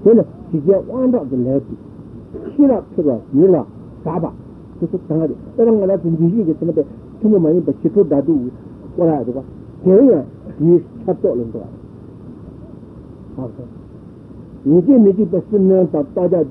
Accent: Indian